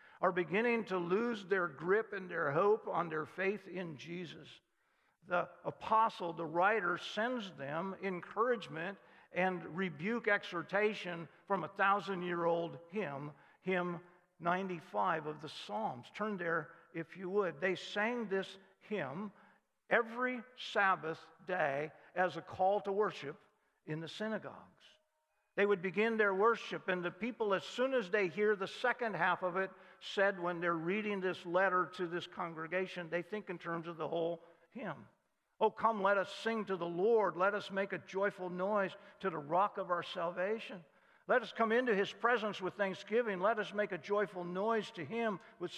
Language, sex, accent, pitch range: English, male, American, 175-215 Hz